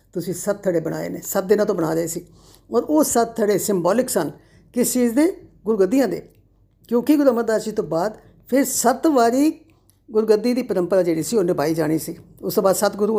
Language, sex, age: Punjabi, female, 50-69